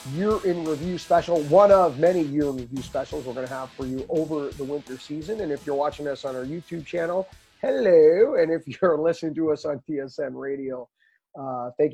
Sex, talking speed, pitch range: male, 210 wpm, 140-170 Hz